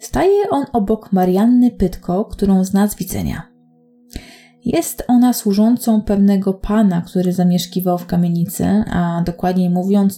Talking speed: 125 wpm